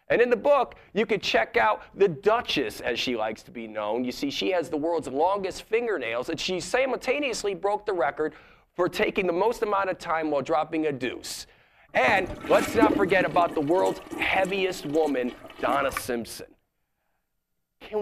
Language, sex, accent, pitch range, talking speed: English, male, American, 175-250 Hz, 175 wpm